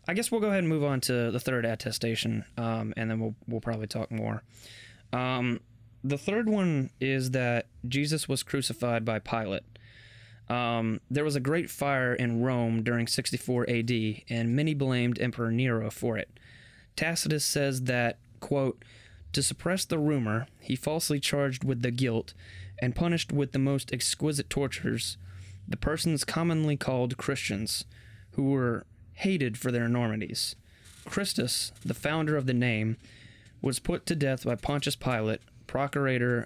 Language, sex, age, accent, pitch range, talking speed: English, male, 20-39, American, 110-135 Hz, 155 wpm